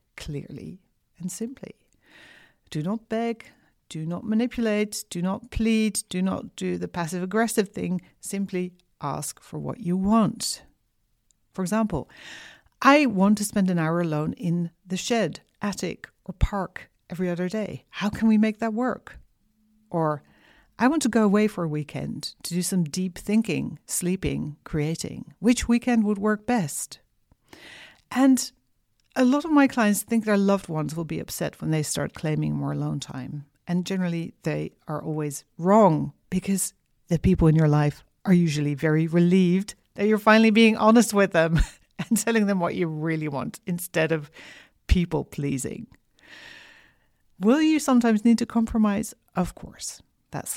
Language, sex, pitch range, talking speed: English, female, 155-220 Hz, 160 wpm